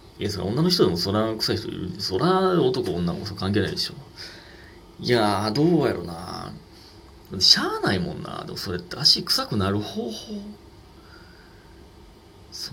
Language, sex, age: Japanese, male, 30-49